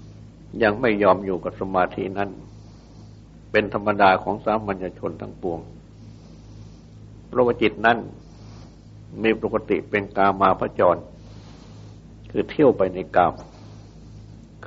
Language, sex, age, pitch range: Thai, male, 60-79, 95-110 Hz